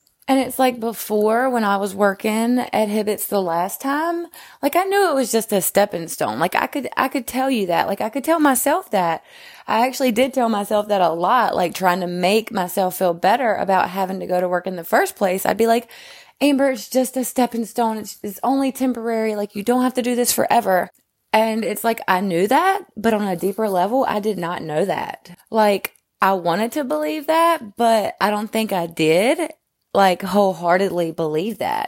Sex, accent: female, American